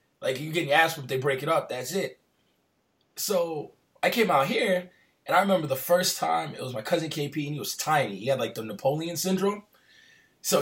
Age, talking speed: 20-39, 215 wpm